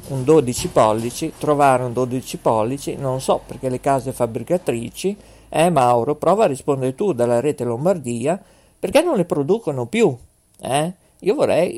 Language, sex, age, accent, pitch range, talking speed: Italian, male, 50-69, native, 120-160 Hz, 160 wpm